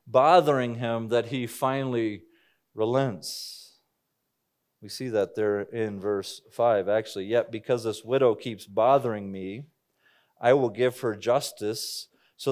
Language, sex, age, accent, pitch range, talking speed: English, male, 30-49, American, 115-155 Hz, 130 wpm